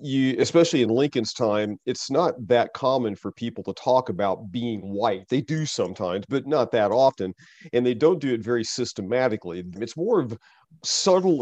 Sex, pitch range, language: male, 110-150 Hz, English